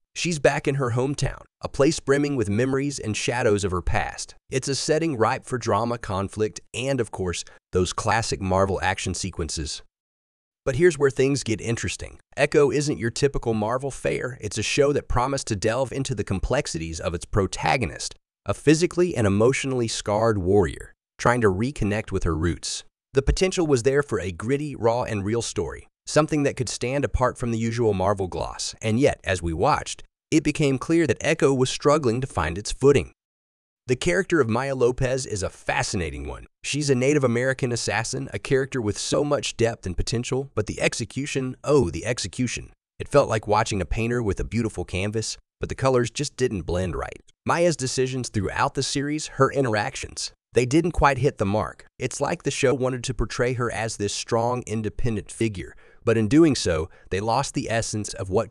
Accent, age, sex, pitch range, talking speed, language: American, 30-49, male, 100-135 Hz, 190 wpm, English